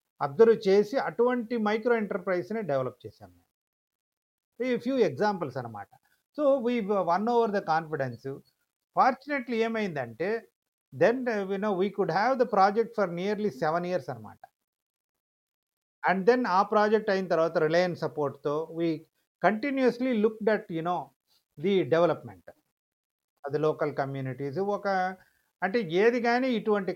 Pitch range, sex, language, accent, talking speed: 160-225 Hz, male, Telugu, native, 120 wpm